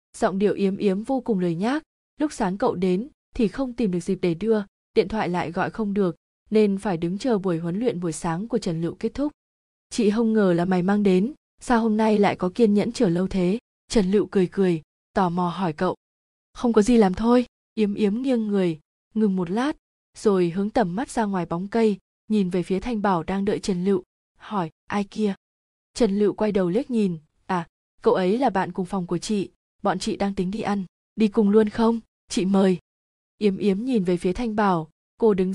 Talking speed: 225 wpm